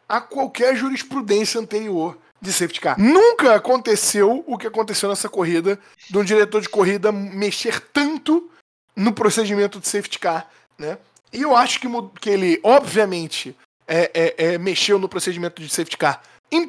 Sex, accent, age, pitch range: male, Brazilian, 20-39, 160-225 Hz